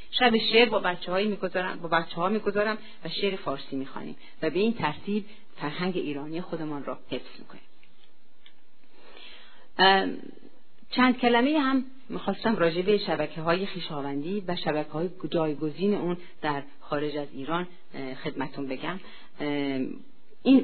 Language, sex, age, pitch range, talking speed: Persian, female, 40-59, 155-210 Hz, 130 wpm